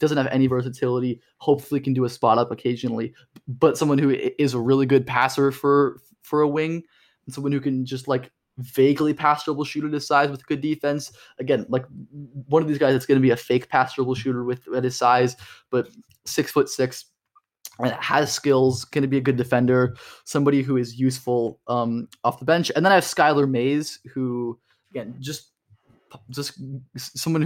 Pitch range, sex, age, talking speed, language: 125-145 Hz, male, 20-39, 190 wpm, English